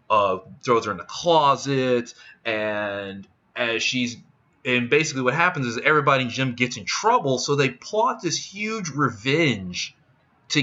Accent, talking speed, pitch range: American, 150 wpm, 115-135 Hz